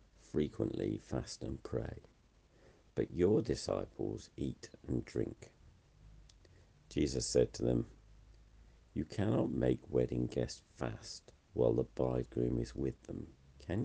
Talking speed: 115 wpm